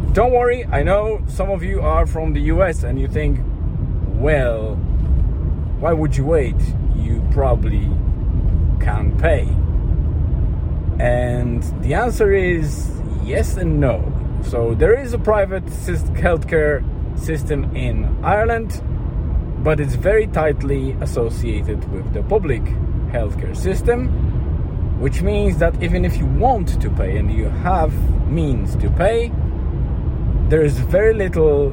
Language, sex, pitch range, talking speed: English, male, 80-110 Hz, 130 wpm